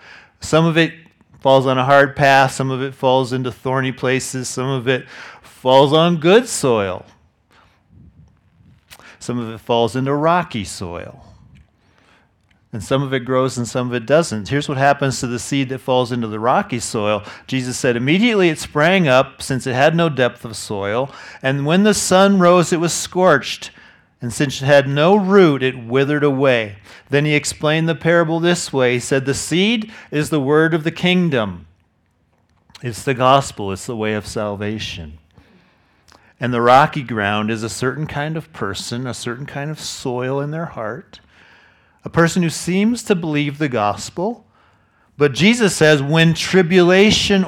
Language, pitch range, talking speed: English, 120-165 Hz, 175 wpm